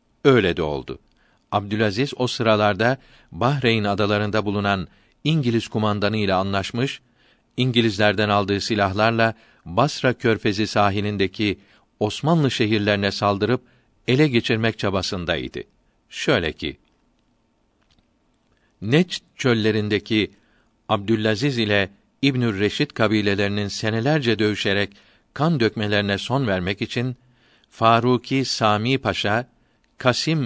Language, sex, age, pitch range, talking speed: Turkish, male, 50-69, 105-125 Hz, 90 wpm